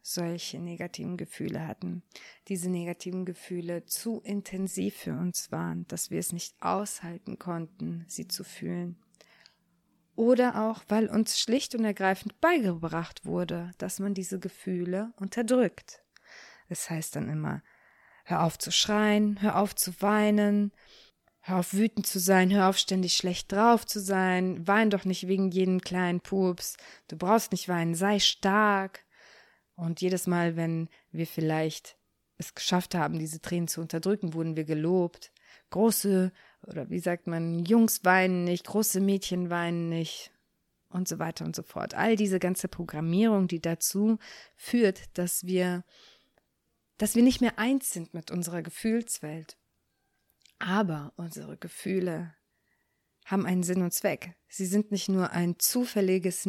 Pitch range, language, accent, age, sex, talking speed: 170-205 Hz, German, German, 20-39, female, 145 wpm